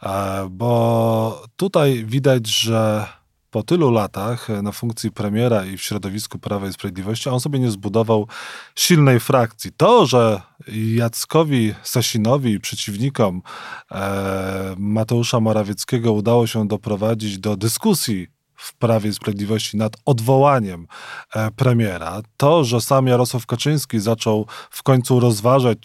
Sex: male